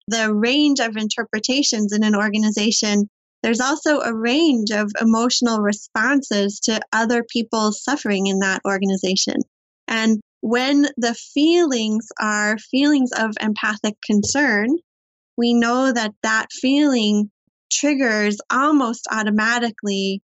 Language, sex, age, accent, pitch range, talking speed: English, female, 20-39, American, 210-245 Hz, 115 wpm